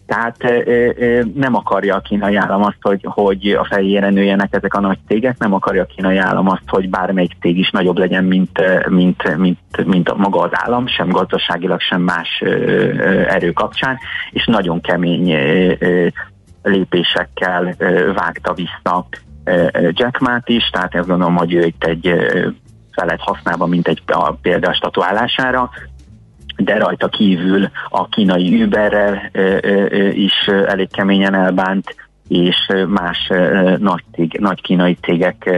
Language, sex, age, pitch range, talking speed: Hungarian, male, 30-49, 90-100 Hz, 135 wpm